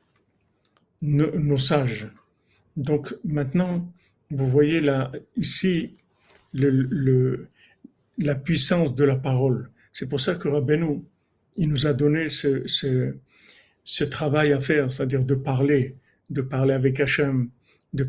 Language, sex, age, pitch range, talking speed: French, male, 50-69, 135-150 Hz, 130 wpm